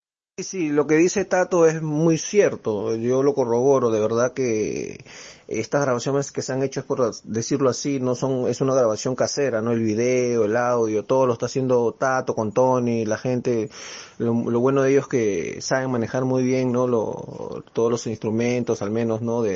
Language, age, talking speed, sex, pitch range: Spanish, 30-49, 200 wpm, male, 110-130 Hz